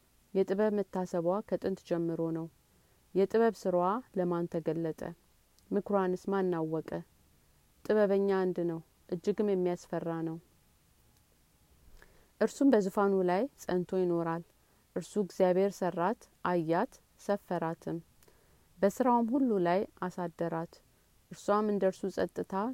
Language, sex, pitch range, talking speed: Amharic, female, 170-195 Hz, 90 wpm